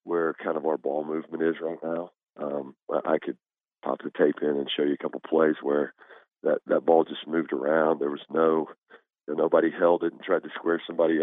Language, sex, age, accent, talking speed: English, male, 40-59, American, 215 wpm